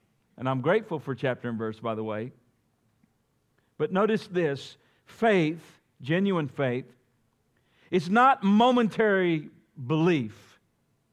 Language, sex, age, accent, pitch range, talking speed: English, male, 50-69, American, 155-200 Hz, 110 wpm